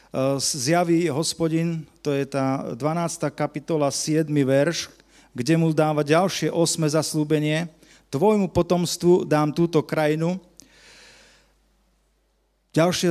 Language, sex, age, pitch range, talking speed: Slovak, male, 40-59, 145-165 Hz, 95 wpm